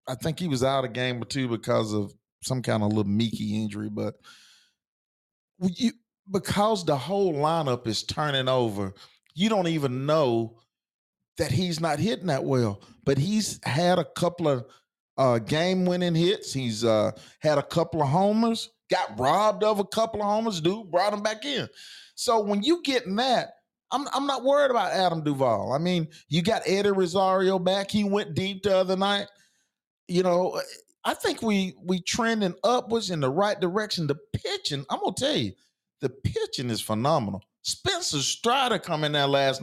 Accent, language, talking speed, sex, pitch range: American, English, 180 wpm, male, 135-210 Hz